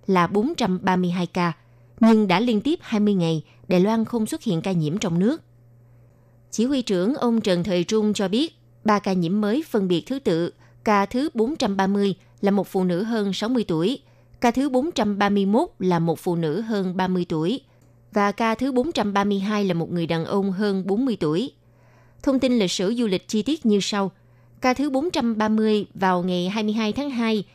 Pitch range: 170-230 Hz